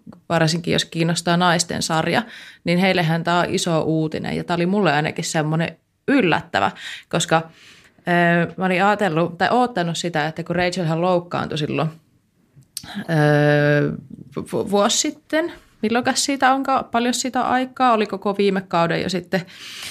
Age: 20-39